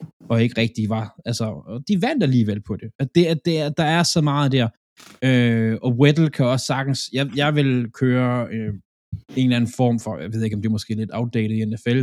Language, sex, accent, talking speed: Danish, male, native, 230 wpm